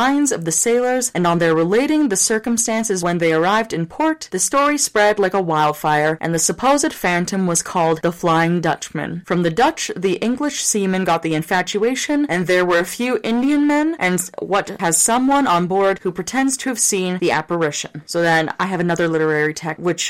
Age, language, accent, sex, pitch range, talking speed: 20-39, English, American, female, 165-235 Hz, 195 wpm